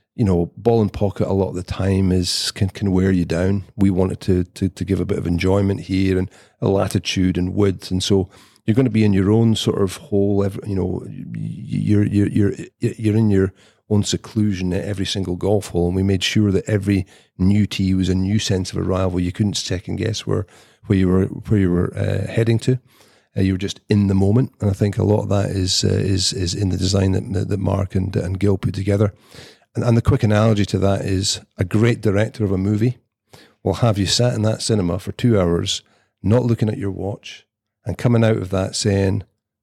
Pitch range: 95-110 Hz